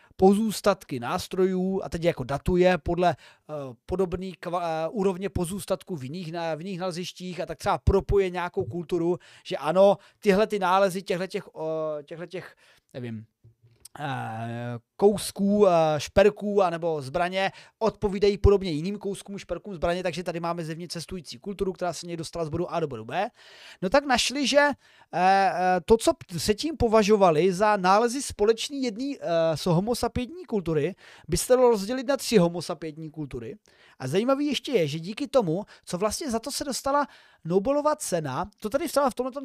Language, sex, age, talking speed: Czech, male, 30-49, 155 wpm